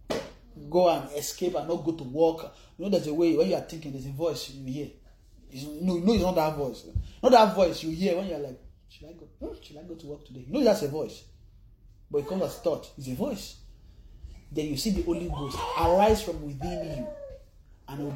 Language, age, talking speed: English, 30-49, 240 wpm